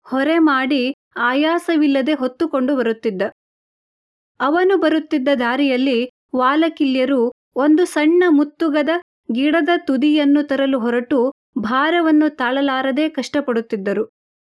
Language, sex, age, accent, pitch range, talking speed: Kannada, female, 30-49, native, 255-310 Hz, 80 wpm